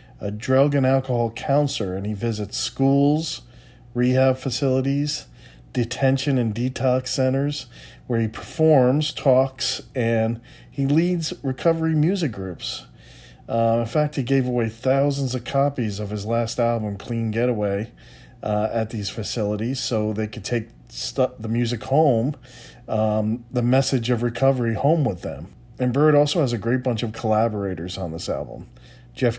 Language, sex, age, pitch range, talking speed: English, male, 40-59, 110-140 Hz, 145 wpm